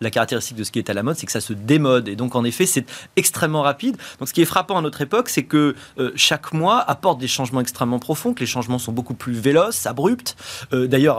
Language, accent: French, French